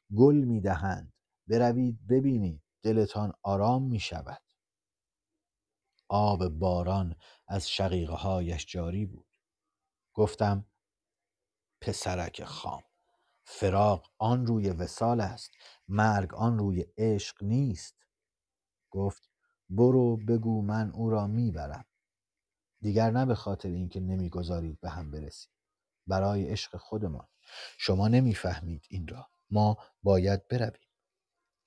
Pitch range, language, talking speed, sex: 90-115 Hz, Persian, 105 wpm, male